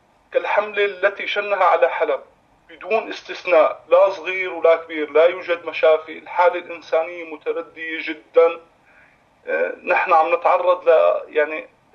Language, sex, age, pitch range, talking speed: Arabic, male, 30-49, 160-190 Hz, 115 wpm